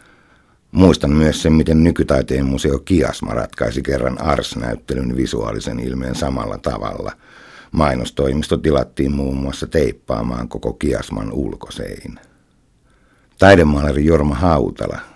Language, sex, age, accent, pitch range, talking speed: Finnish, male, 60-79, native, 65-80 Hz, 100 wpm